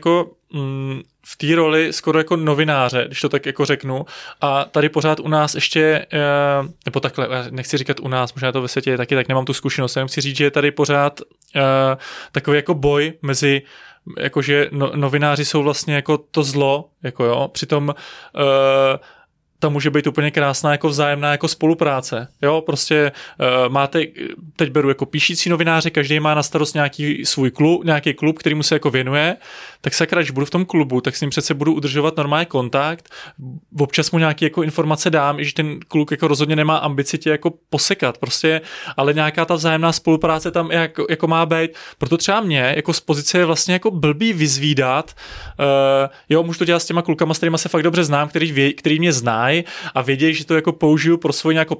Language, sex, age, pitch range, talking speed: Czech, male, 20-39, 140-160 Hz, 195 wpm